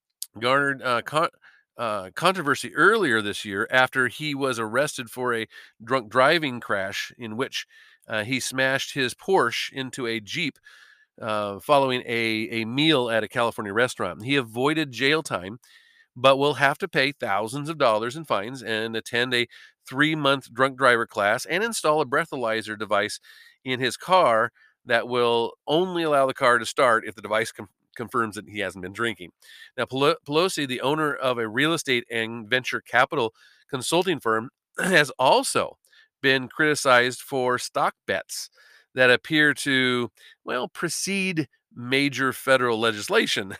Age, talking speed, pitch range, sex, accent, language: 40-59, 150 wpm, 115-145 Hz, male, American, English